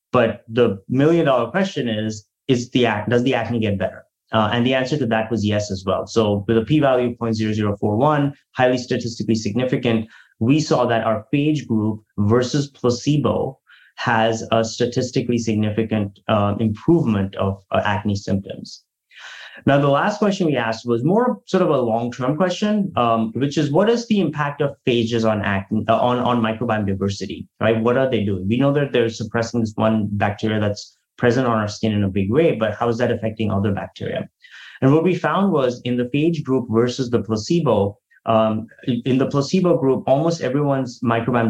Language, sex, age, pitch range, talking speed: English, male, 20-39, 110-135 Hz, 185 wpm